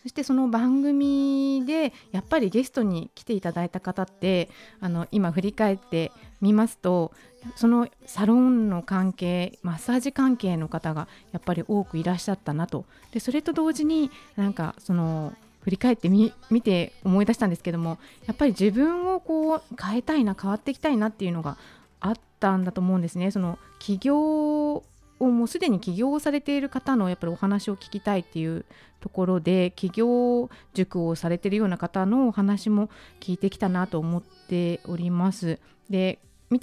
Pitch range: 180-230 Hz